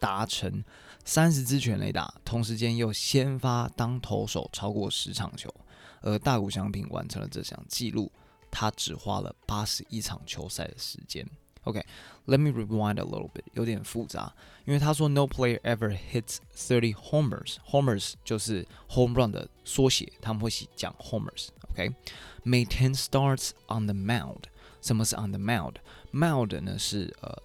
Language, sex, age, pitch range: Chinese, male, 20-39, 100-130 Hz